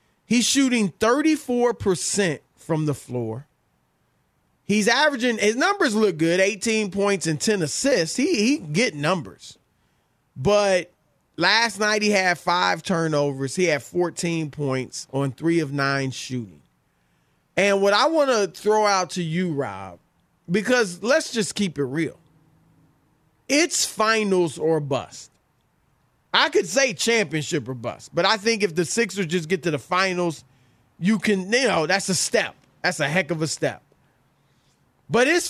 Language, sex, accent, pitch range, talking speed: English, male, American, 150-230 Hz, 150 wpm